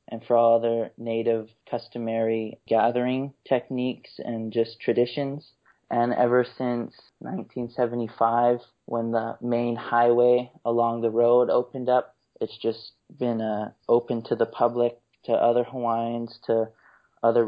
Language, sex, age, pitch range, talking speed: English, male, 20-39, 115-125 Hz, 125 wpm